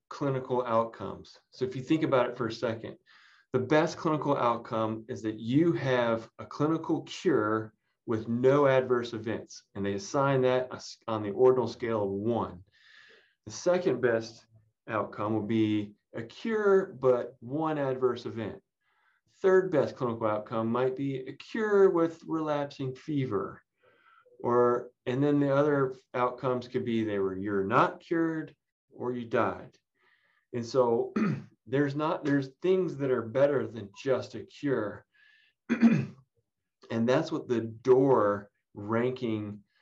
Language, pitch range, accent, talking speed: English, 110-135 Hz, American, 140 wpm